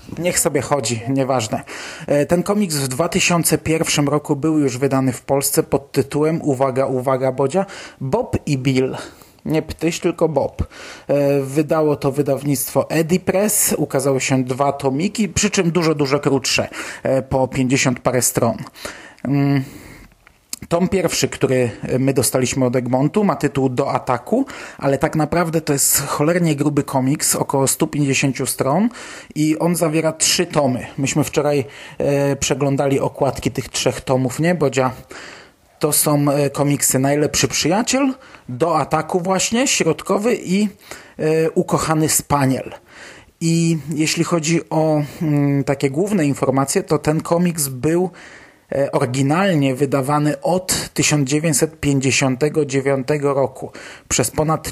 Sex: male